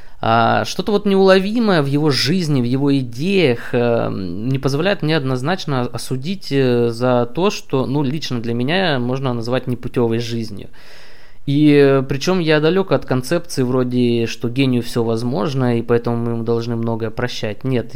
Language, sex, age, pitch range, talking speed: Russian, male, 20-39, 120-155 Hz, 145 wpm